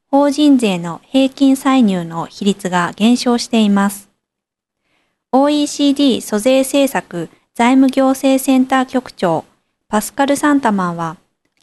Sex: female